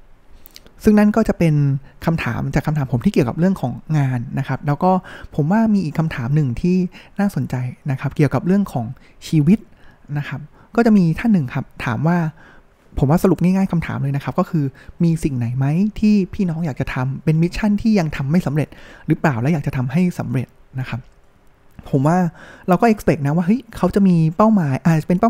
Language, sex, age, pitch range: Thai, male, 20-39, 140-185 Hz